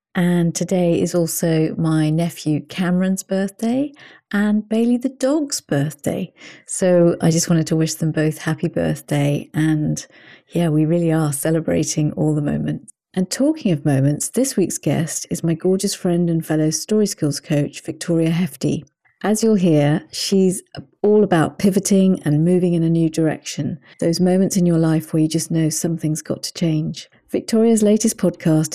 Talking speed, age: 165 wpm, 40-59